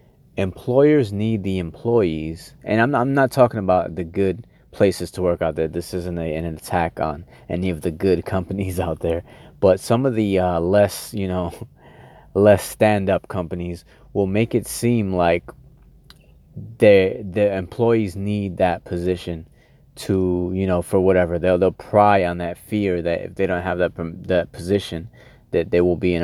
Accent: American